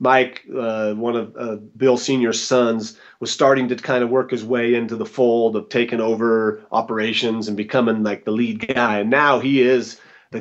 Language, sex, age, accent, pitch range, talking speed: English, male, 30-49, American, 110-130 Hz, 195 wpm